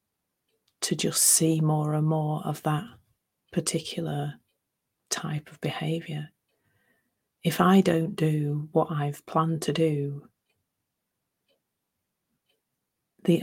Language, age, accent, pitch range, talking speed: English, 30-49, British, 150-170 Hz, 100 wpm